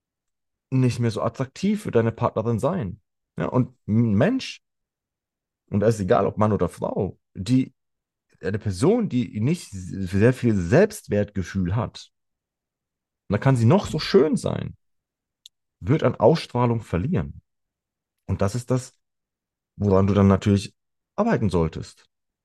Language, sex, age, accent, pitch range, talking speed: German, male, 40-59, German, 95-125 Hz, 135 wpm